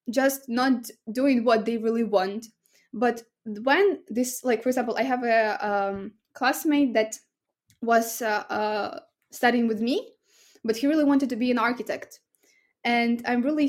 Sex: female